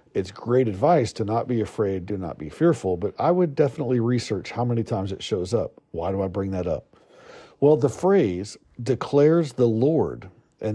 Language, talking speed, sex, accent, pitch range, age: English, 195 wpm, male, American, 110-145 Hz, 50-69